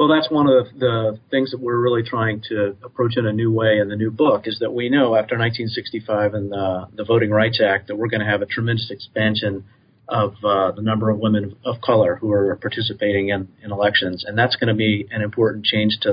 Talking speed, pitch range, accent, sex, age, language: 235 wpm, 105-120 Hz, American, male, 40-59, English